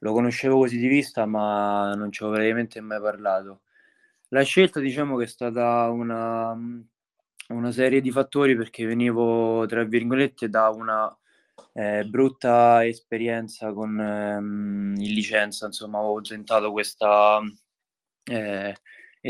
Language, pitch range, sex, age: Italian, 100-115 Hz, male, 20-39